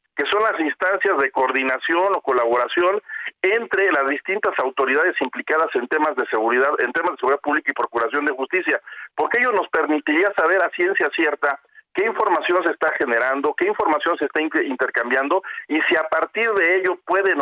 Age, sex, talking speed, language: 50-69, male, 175 wpm, Spanish